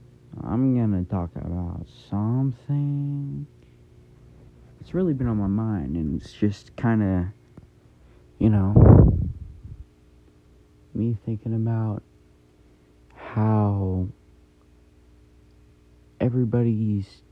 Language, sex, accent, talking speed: English, male, American, 75 wpm